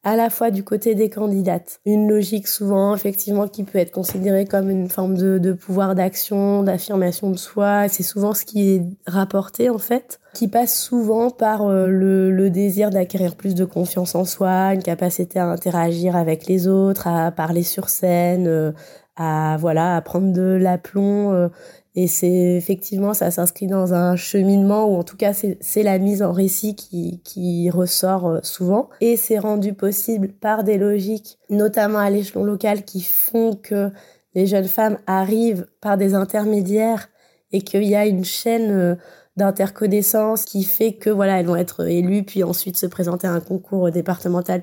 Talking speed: 180 wpm